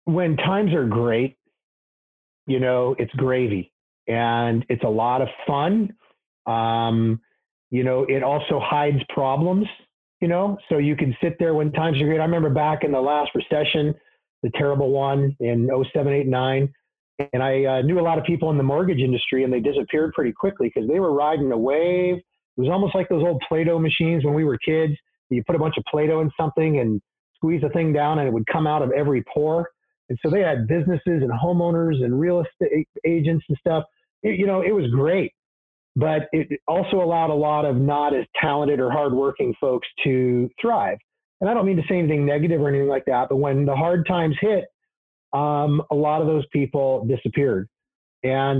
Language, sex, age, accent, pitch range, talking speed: English, male, 40-59, American, 135-165 Hz, 195 wpm